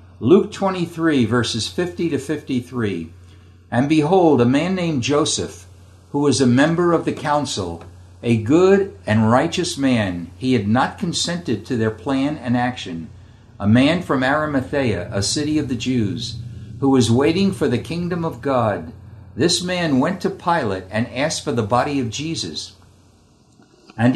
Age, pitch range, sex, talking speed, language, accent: 60-79, 105-160 Hz, male, 155 wpm, English, American